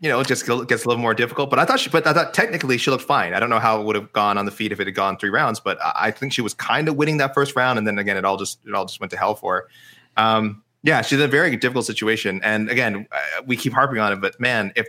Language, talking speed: English, 325 wpm